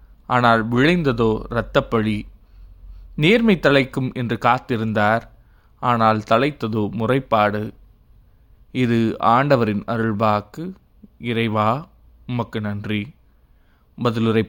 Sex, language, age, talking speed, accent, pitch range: male, Tamil, 20-39, 70 wpm, native, 110-140 Hz